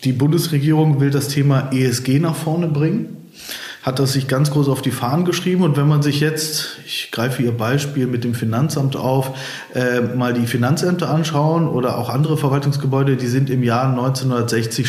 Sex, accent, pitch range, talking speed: male, German, 125-145 Hz, 180 wpm